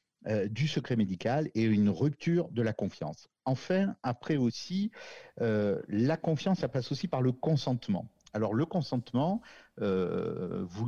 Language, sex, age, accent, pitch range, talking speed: French, male, 50-69, French, 105-150 Hz, 150 wpm